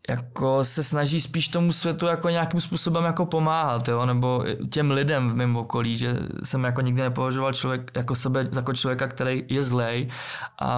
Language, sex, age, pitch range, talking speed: Czech, male, 20-39, 120-140 Hz, 180 wpm